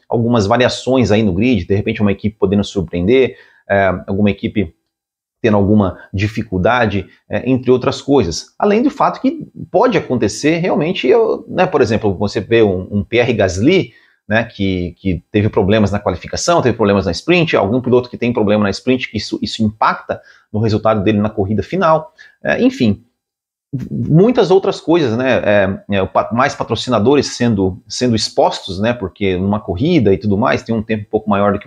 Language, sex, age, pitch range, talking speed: Portuguese, male, 30-49, 100-130 Hz, 165 wpm